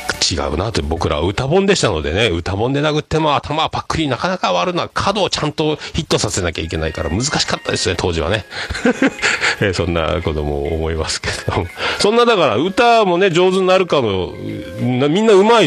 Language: Japanese